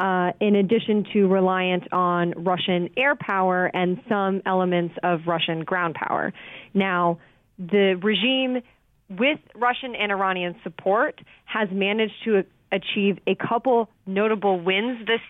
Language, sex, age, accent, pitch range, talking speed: English, female, 20-39, American, 180-215 Hz, 130 wpm